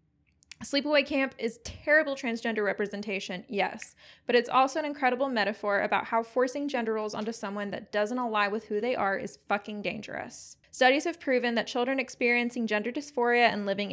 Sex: female